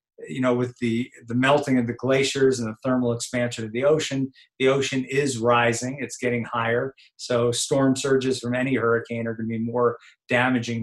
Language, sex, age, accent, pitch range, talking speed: English, male, 50-69, American, 115-140 Hz, 190 wpm